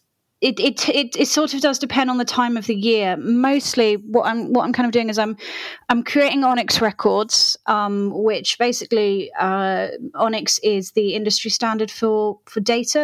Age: 30-49